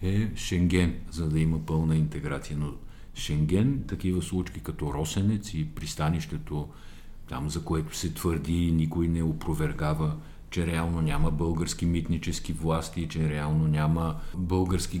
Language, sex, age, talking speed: Bulgarian, male, 50-69, 130 wpm